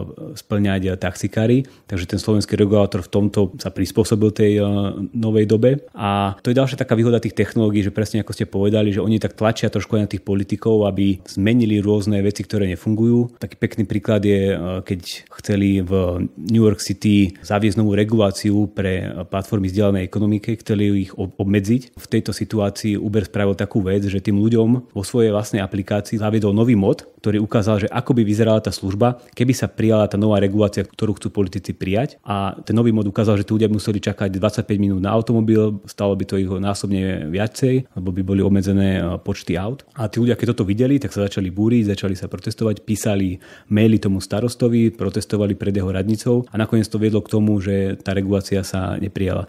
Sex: male